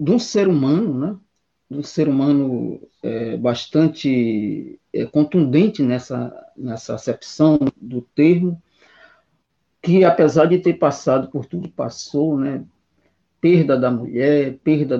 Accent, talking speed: Brazilian, 125 wpm